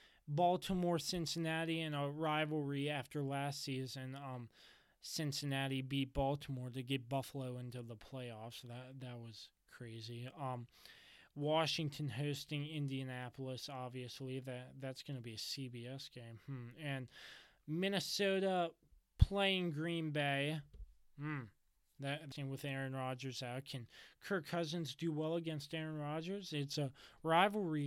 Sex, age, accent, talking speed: male, 20-39, American, 125 wpm